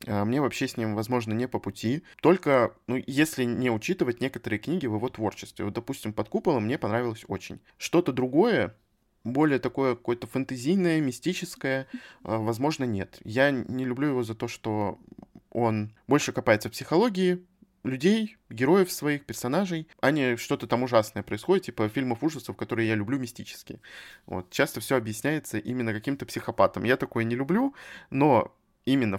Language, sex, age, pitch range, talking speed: Russian, male, 20-39, 110-140 Hz, 155 wpm